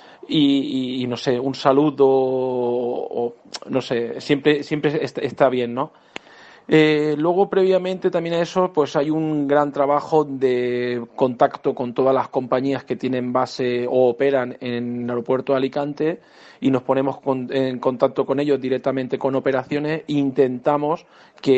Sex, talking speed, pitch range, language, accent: male, 160 wpm, 125-145 Hz, Spanish, Spanish